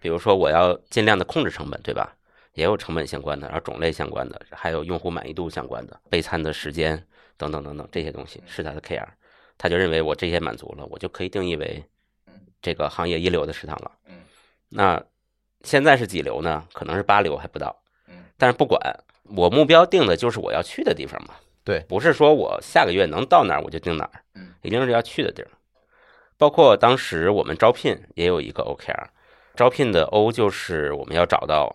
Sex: male